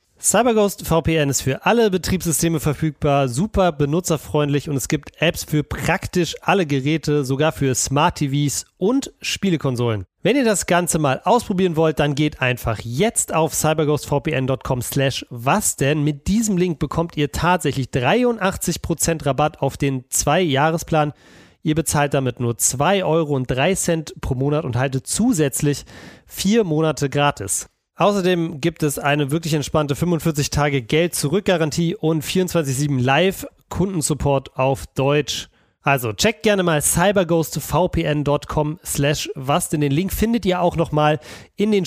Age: 30-49